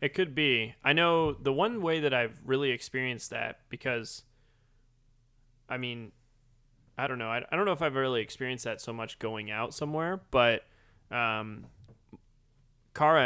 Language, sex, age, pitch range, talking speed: English, male, 20-39, 115-140 Hz, 165 wpm